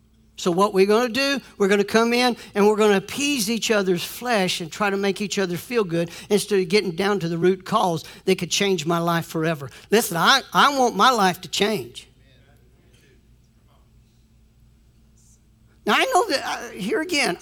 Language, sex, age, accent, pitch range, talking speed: English, male, 60-79, American, 180-240 Hz, 195 wpm